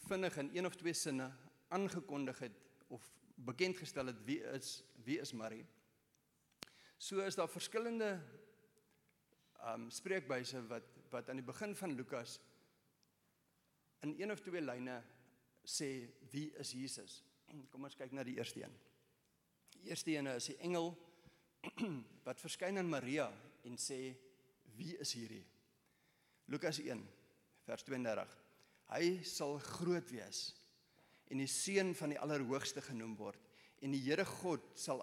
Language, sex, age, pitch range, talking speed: English, male, 50-69, 130-170 Hz, 140 wpm